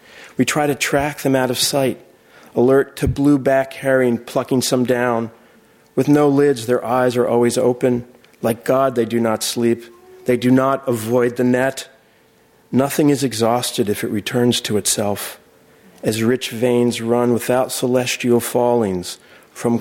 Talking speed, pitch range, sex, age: 155 wpm, 120-135 Hz, male, 40-59